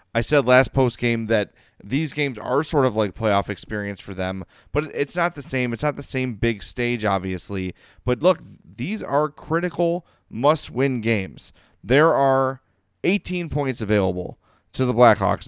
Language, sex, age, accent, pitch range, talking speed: English, male, 30-49, American, 105-140 Hz, 165 wpm